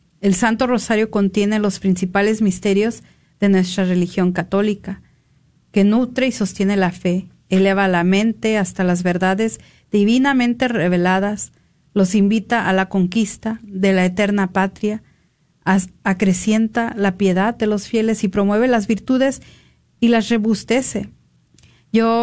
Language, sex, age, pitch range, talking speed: Spanish, female, 40-59, 190-220 Hz, 130 wpm